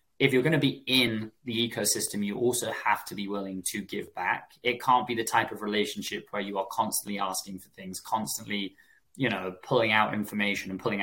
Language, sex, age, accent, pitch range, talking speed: English, male, 20-39, British, 100-120 Hz, 205 wpm